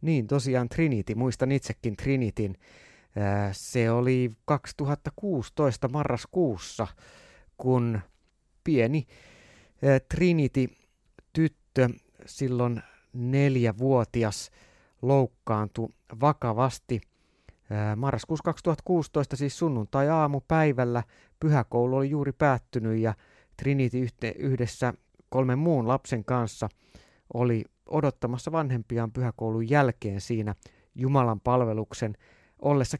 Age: 30-49